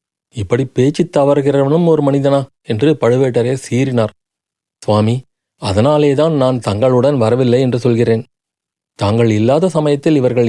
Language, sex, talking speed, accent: Tamil, male, 110 wpm, native